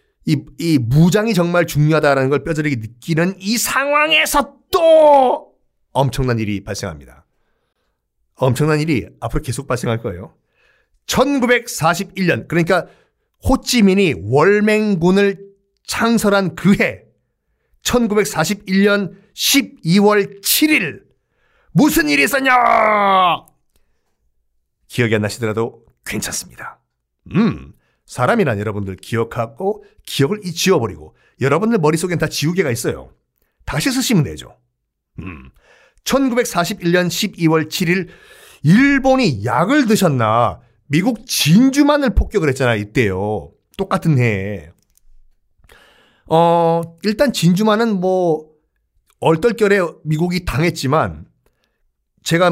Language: Korean